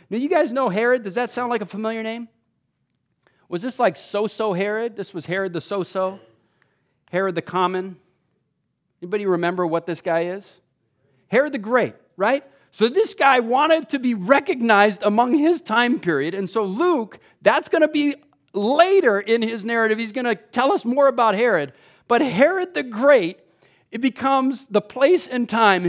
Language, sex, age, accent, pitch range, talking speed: English, male, 40-59, American, 185-270 Hz, 175 wpm